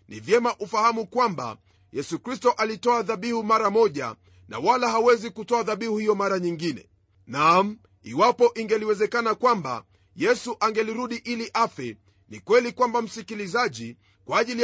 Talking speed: 125 wpm